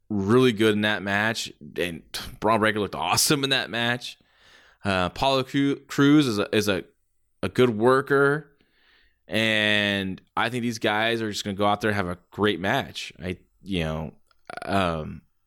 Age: 20-39